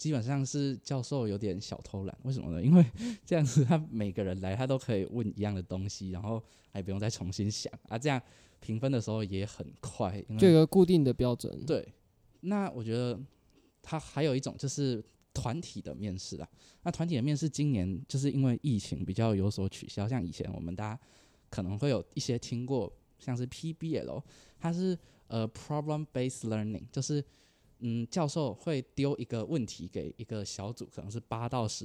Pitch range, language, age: 100-135 Hz, Chinese, 20-39